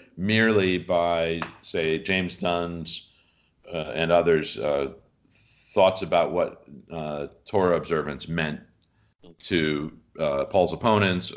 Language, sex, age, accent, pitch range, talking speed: English, male, 50-69, American, 80-100 Hz, 105 wpm